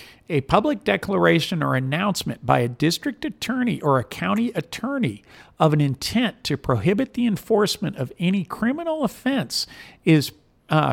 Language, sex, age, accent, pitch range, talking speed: English, male, 50-69, American, 135-185 Hz, 145 wpm